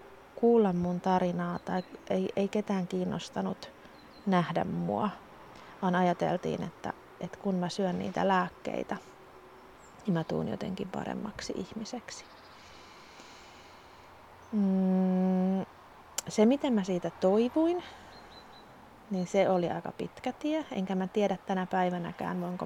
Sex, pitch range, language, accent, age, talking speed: female, 180-215 Hz, Finnish, native, 30-49, 115 wpm